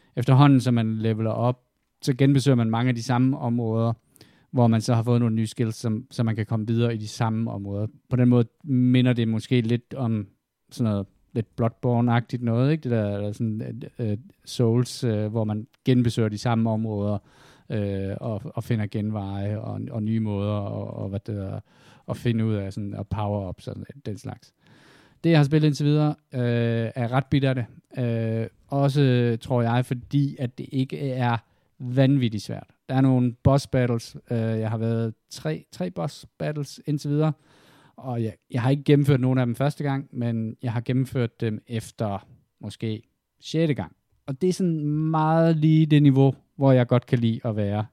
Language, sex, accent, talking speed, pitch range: Danish, male, native, 185 wpm, 110-135 Hz